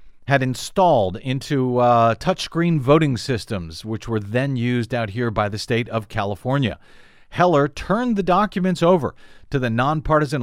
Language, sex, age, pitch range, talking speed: English, male, 40-59, 120-165 Hz, 150 wpm